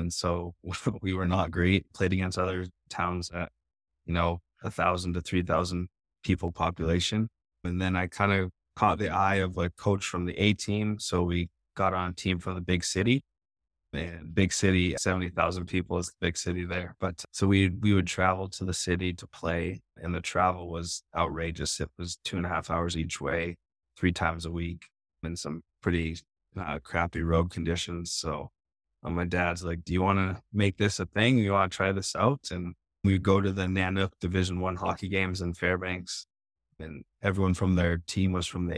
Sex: male